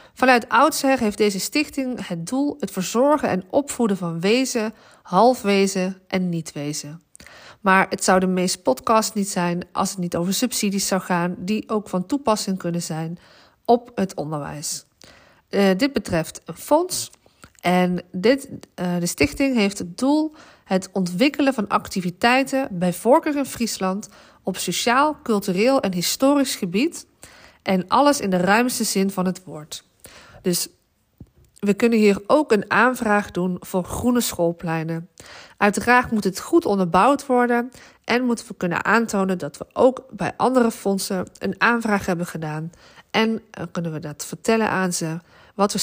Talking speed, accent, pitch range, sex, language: 155 wpm, Dutch, 175-240 Hz, female, Dutch